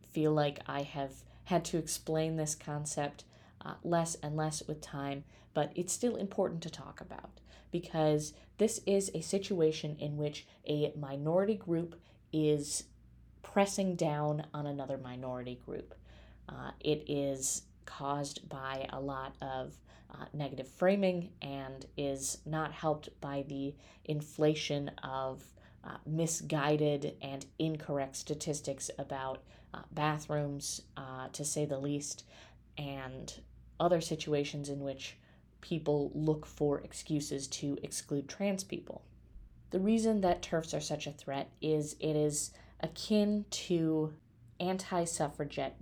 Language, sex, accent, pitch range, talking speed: English, female, American, 140-160 Hz, 130 wpm